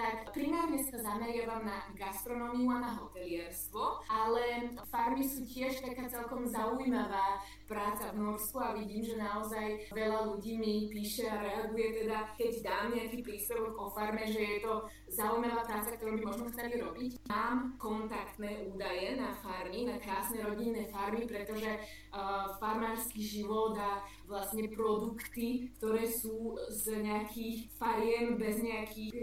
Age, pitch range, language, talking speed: 20-39, 210-235 Hz, Slovak, 140 wpm